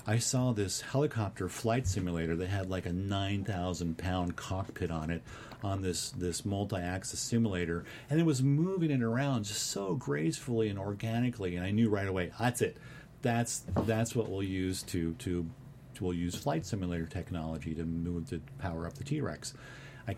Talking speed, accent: 185 wpm, American